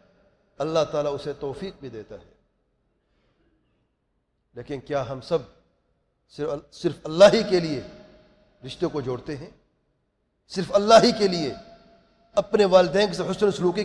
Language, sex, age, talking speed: English, male, 40-59, 135 wpm